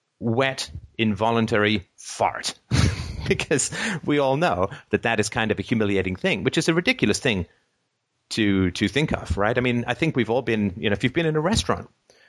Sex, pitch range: male, 100-125 Hz